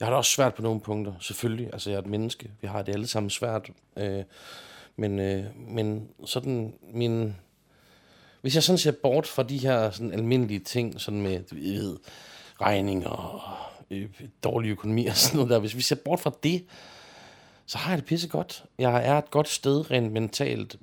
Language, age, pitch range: Danish, 30-49, 105-130 Hz